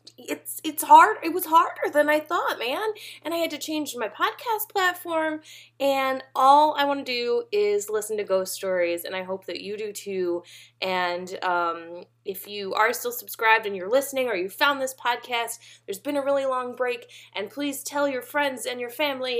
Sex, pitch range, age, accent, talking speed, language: female, 180-275 Hz, 20-39, American, 200 wpm, English